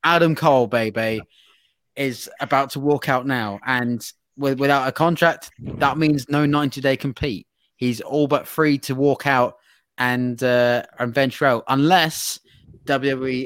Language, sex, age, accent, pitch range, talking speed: English, male, 20-39, British, 120-140 Hz, 145 wpm